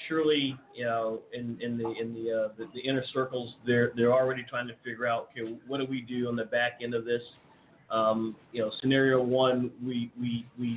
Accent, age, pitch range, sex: American, 40-59, 120-135 Hz, male